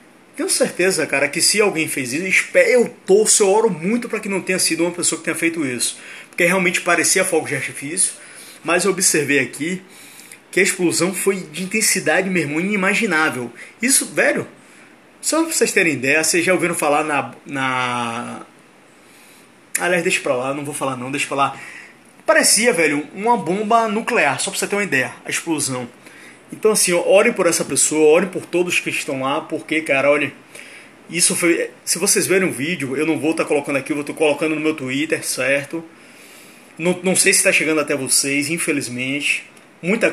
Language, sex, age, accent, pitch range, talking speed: Portuguese, male, 20-39, Brazilian, 145-190 Hz, 190 wpm